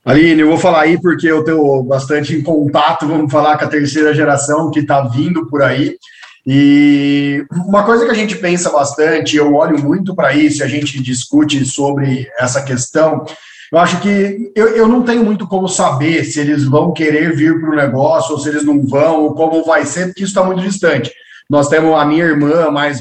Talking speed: 205 wpm